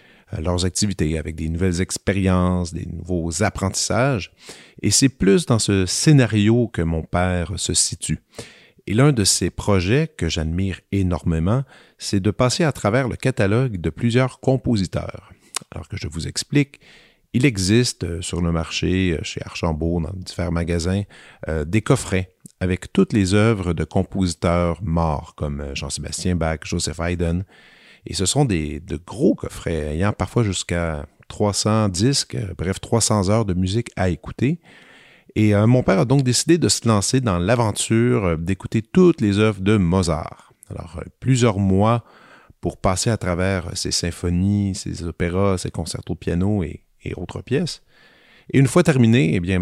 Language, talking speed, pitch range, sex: French, 155 wpm, 85-115 Hz, male